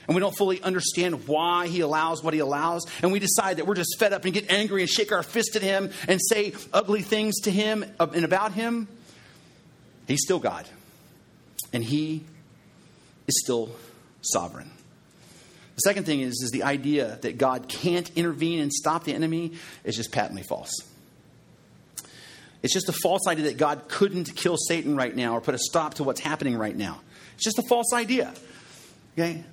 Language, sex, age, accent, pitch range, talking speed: English, male, 40-59, American, 155-205 Hz, 185 wpm